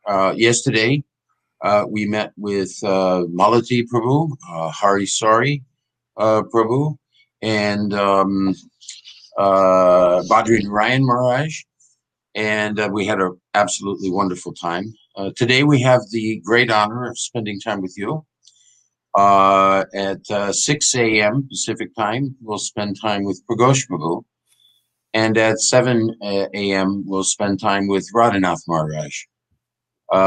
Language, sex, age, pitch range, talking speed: English, male, 50-69, 100-125 Hz, 125 wpm